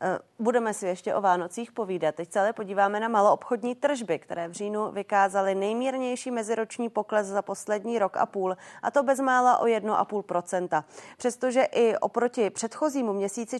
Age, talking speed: 30-49, 150 wpm